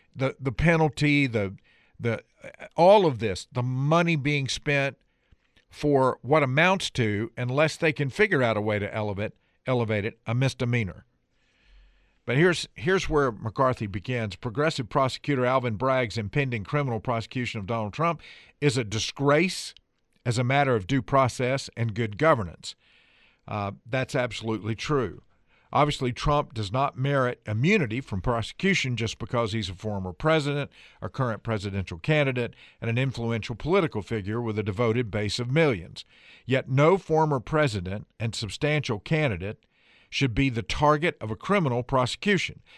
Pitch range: 115-145 Hz